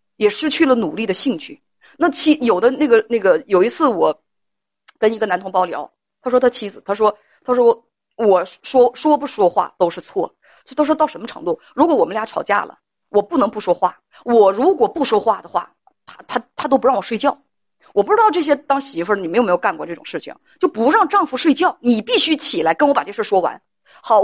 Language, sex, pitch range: Chinese, female, 220-310 Hz